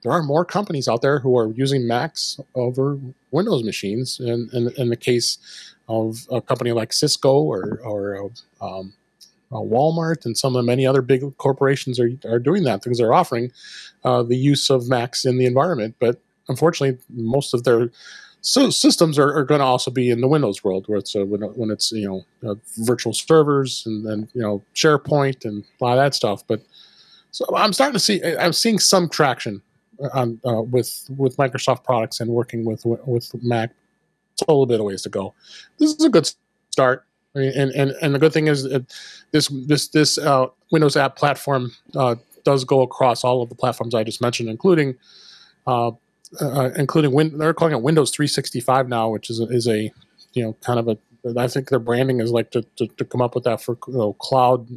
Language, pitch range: English, 115-140 Hz